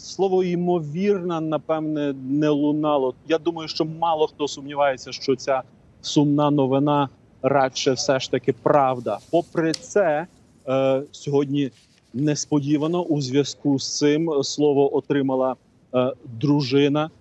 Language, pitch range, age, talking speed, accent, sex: Ukrainian, 130-150 Hz, 30-49, 110 wpm, native, male